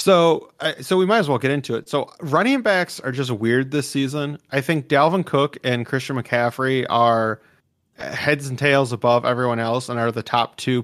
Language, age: English, 30-49